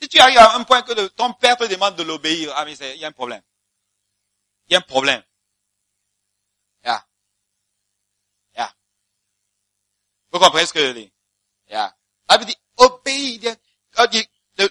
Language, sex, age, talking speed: English, male, 50-69, 190 wpm